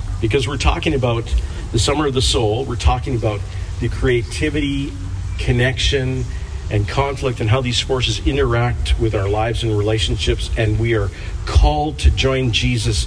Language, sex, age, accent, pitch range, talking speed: English, male, 40-59, American, 85-115 Hz, 155 wpm